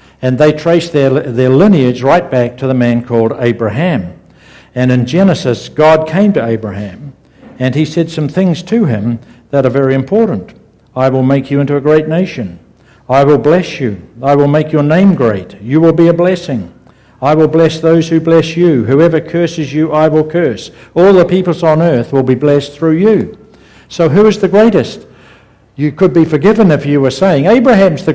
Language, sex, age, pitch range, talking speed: English, male, 60-79, 125-165 Hz, 195 wpm